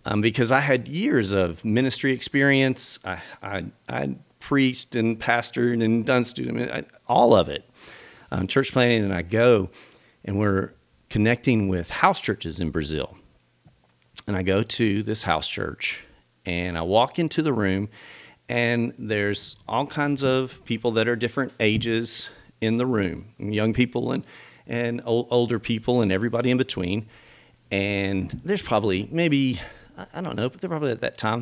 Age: 40-59